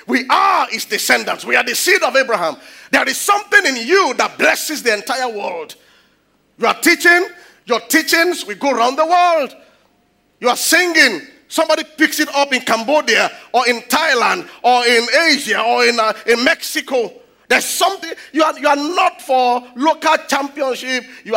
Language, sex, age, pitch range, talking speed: English, male, 40-59, 190-315 Hz, 170 wpm